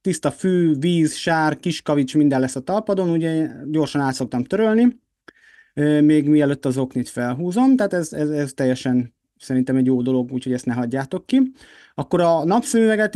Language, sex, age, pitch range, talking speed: Hungarian, male, 30-49, 130-175 Hz, 160 wpm